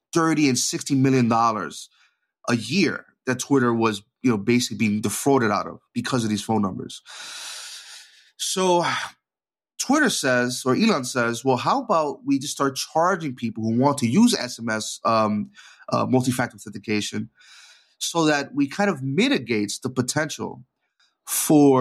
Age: 30-49